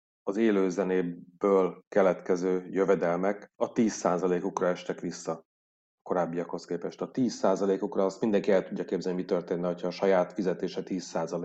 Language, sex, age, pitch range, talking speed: Hungarian, male, 30-49, 90-100 Hz, 120 wpm